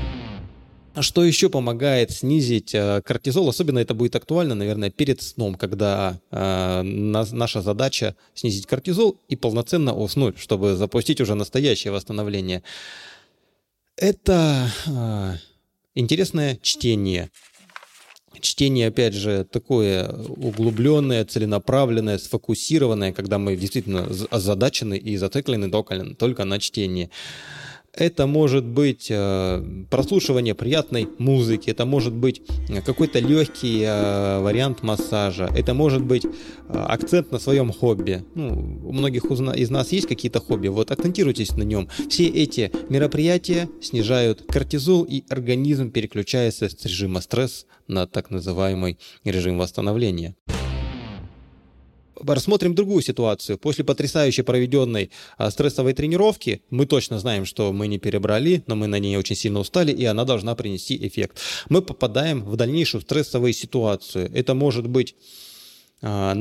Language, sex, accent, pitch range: Russian, male, native, 100-135 Hz